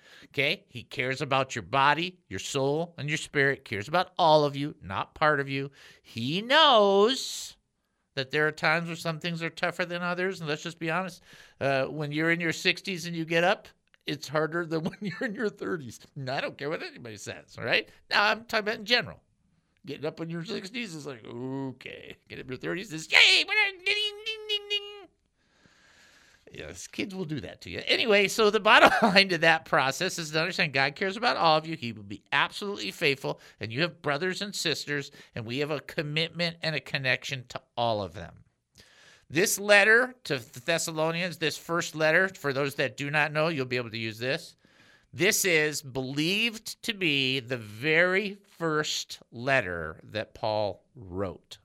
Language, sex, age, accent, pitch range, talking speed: English, male, 50-69, American, 135-185 Hz, 190 wpm